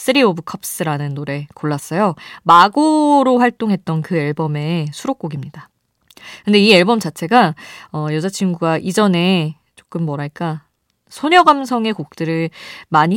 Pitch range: 160-230 Hz